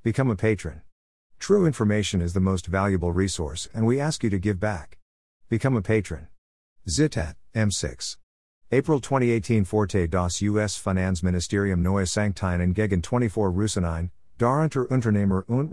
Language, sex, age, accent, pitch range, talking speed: German, male, 50-69, American, 85-110 Hz, 140 wpm